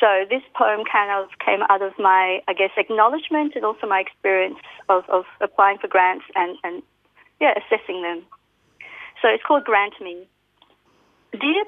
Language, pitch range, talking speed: English, 195-280 Hz, 165 wpm